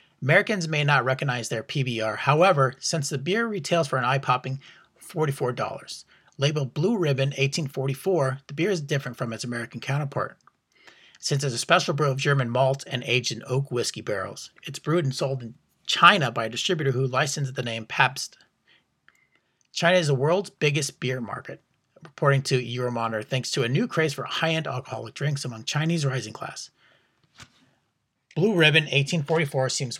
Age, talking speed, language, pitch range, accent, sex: 30-49, 165 wpm, English, 125-155 Hz, American, male